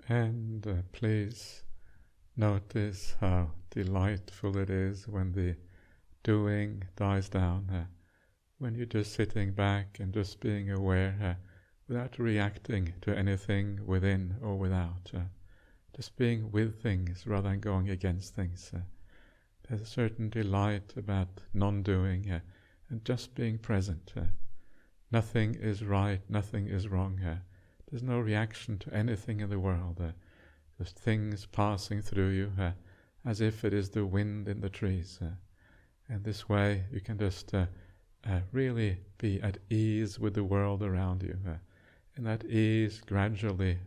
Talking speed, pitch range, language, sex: 145 wpm, 95-105 Hz, English, male